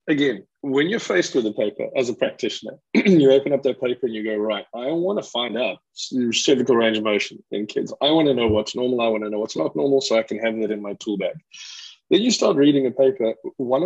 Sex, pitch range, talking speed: male, 115-175 Hz, 260 wpm